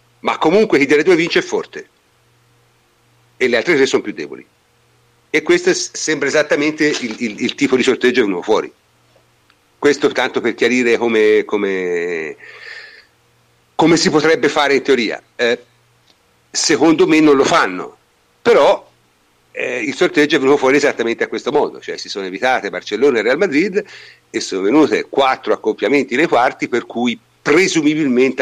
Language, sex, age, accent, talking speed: Italian, male, 50-69, native, 160 wpm